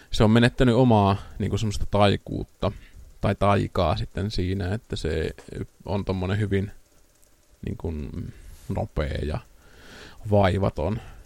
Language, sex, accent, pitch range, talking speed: Finnish, male, native, 95-105 Hz, 100 wpm